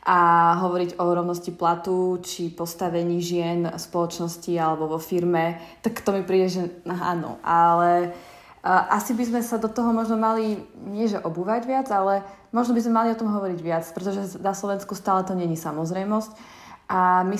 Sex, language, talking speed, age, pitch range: female, Slovak, 175 wpm, 20-39, 175-205 Hz